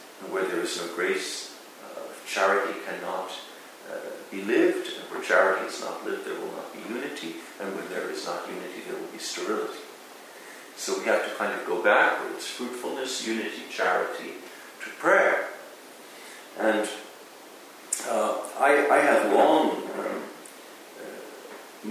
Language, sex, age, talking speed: English, male, 50-69, 145 wpm